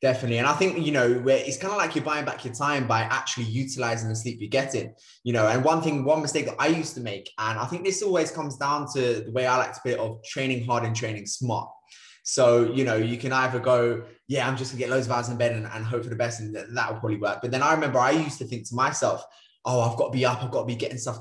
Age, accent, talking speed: 20-39, British, 295 wpm